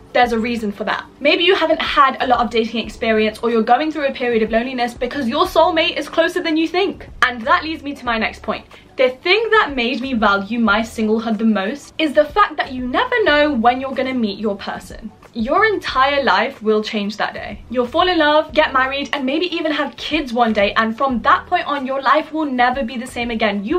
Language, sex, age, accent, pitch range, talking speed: English, female, 10-29, British, 230-315 Hz, 240 wpm